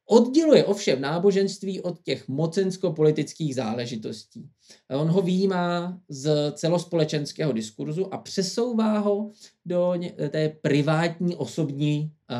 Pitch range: 135-175 Hz